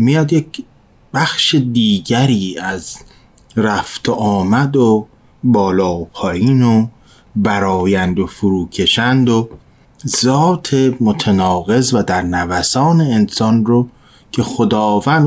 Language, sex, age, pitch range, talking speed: Persian, male, 30-49, 105-130 Hz, 100 wpm